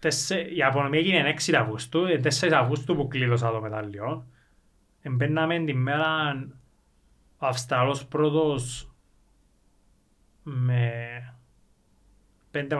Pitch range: 120-155 Hz